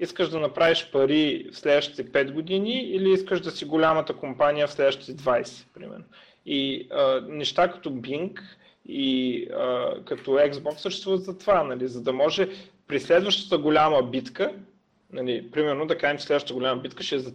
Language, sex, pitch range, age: Bulgarian, male, 145-200 Hz, 30-49